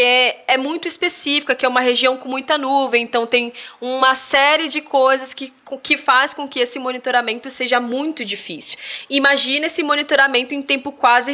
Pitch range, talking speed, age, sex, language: 220-265 Hz, 175 wpm, 20-39, female, Portuguese